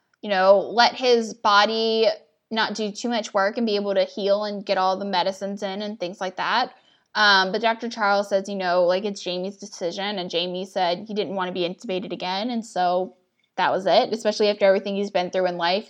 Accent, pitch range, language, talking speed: American, 185-215 Hz, English, 225 wpm